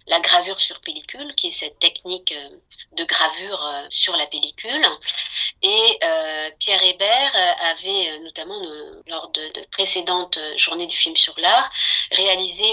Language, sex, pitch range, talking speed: French, female, 170-250 Hz, 140 wpm